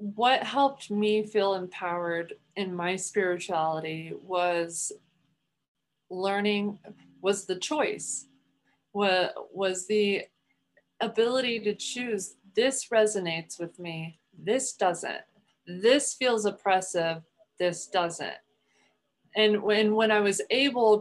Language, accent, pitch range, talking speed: English, American, 180-215 Hz, 100 wpm